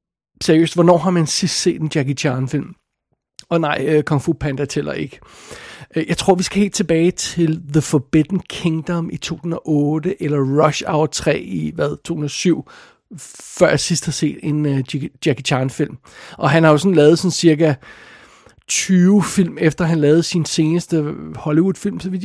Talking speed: 170 wpm